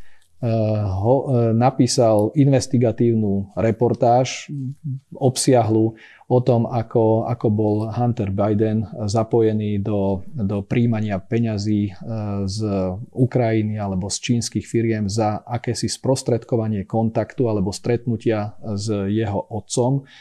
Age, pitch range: 40-59, 110-125 Hz